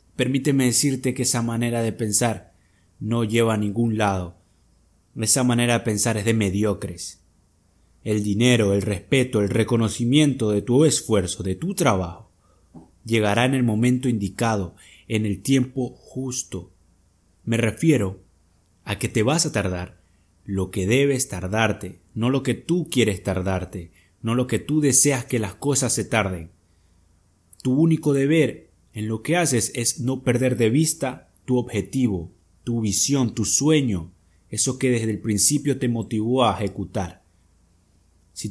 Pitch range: 95-135 Hz